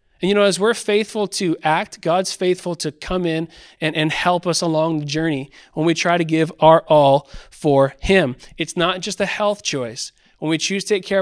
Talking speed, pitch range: 220 wpm, 150-190 Hz